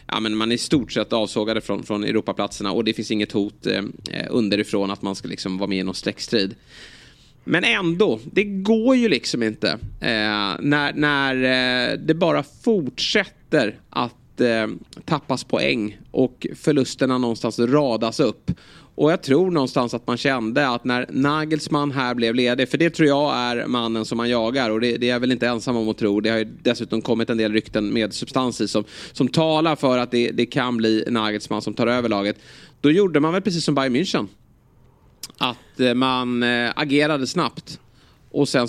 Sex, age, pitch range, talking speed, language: male, 30-49, 110-135 Hz, 185 wpm, Swedish